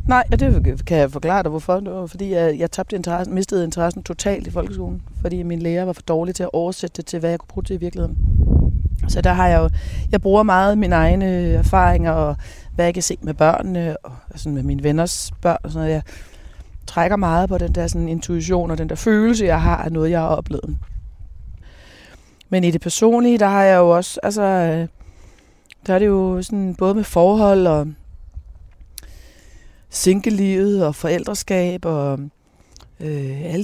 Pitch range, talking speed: 150-200 Hz, 195 wpm